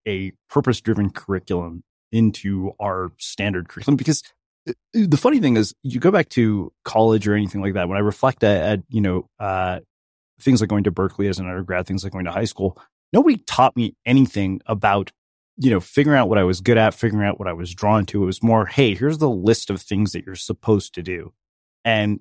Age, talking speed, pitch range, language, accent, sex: 30-49, 215 wpm, 95-125 Hz, English, American, male